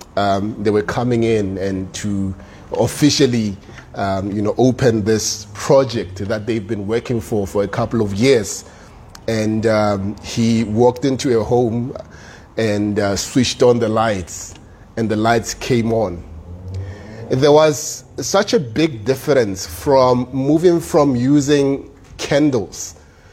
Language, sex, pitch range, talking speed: English, male, 105-140 Hz, 135 wpm